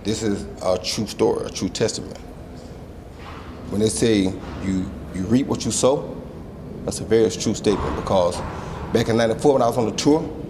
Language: English